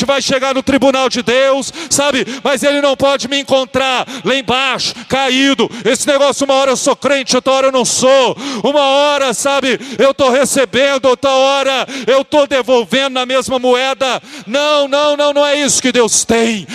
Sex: male